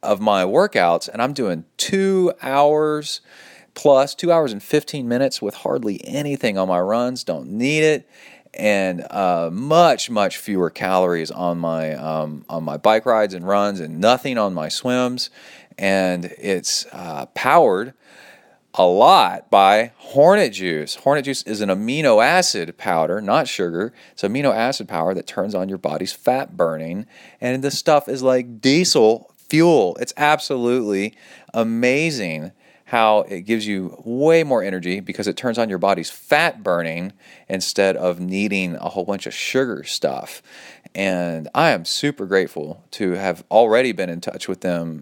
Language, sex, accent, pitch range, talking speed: English, male, American, 90-130 Hz, 160 wpm